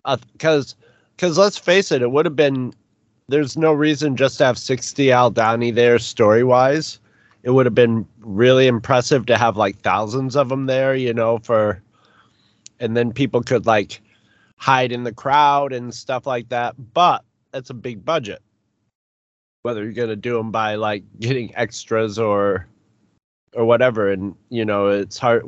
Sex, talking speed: male, 165 wpm